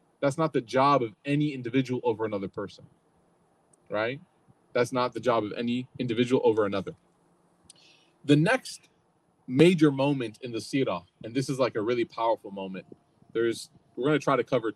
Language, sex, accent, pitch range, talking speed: English, male, American, 125-160 Hz, 170 wpm